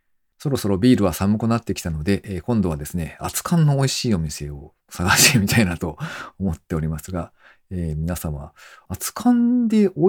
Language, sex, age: Japanese, male, 40-59